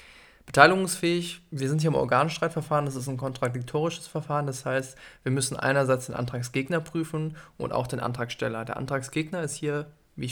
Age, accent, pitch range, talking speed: 20-39, German, 125-145 Hz, 170 wpm